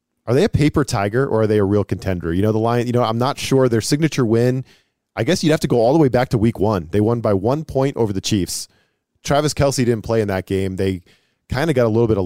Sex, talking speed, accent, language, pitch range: male, 290 wpm, American, English, 105-130 Hz